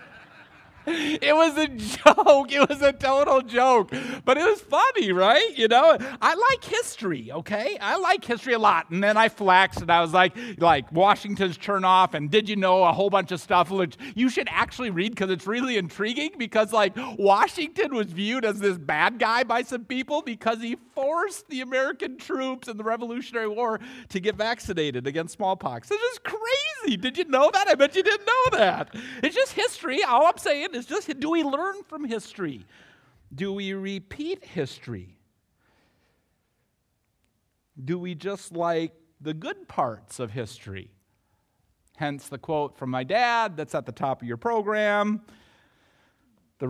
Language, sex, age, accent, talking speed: English, male, 50-69, American, 175 wpm